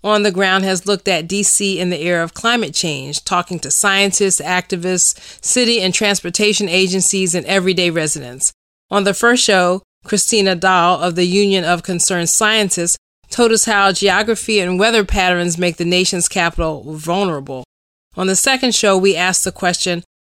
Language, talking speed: English, 165 wpm